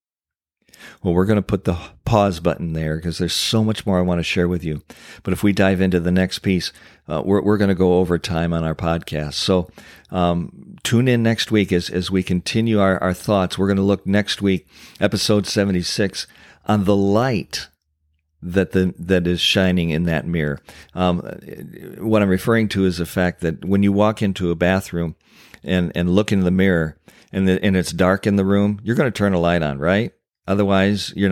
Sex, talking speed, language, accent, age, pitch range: male, 210 wpm, English, American, 50-69, 85-100 Hz